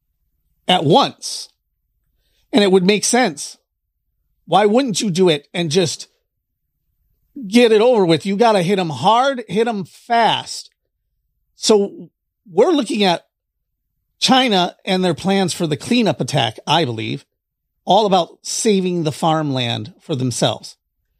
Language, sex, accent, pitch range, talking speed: English, male, American, 140-205 Hz, 135 wpm